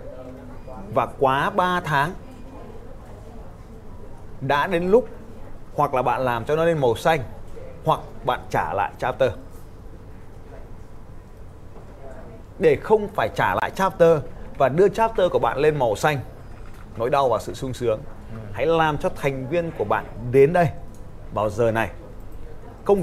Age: 20-39